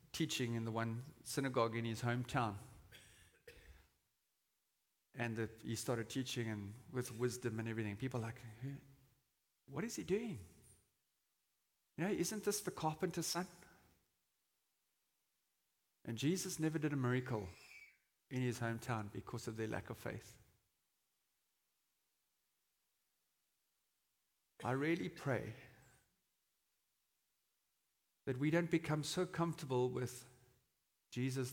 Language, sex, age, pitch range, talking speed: English, male, 50-69, 110-145 Hz, 110 wpm